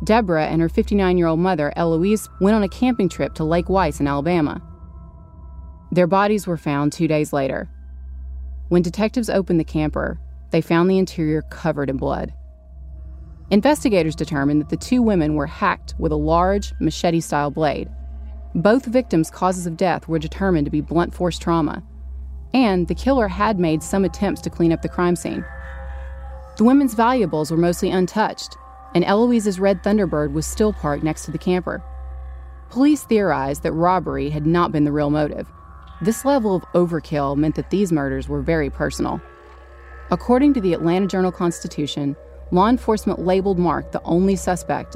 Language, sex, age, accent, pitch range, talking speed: English, female, 30-49, American, 135-190 Hz, 165 wpm